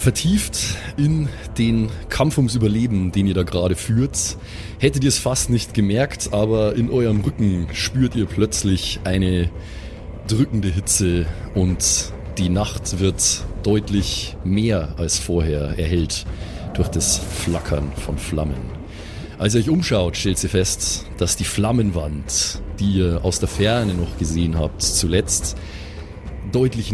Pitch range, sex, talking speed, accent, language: 85-105 Hz, male, 135 wpm, German, German